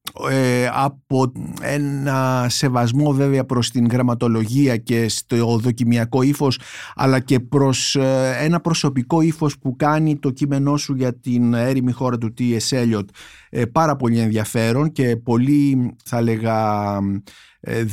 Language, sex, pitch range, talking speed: Greek, male, 120-150 Hz, 130 wpm